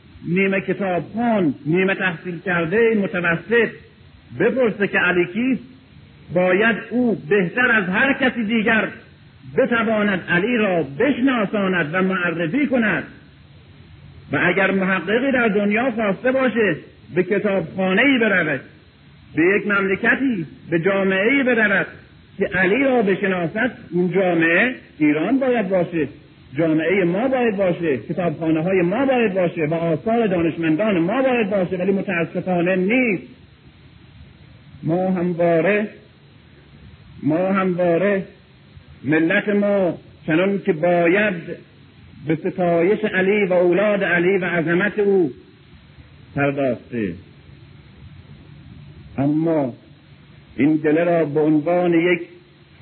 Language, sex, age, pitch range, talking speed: Persian, male, 50-69, 170-205 Hz, 110 wpm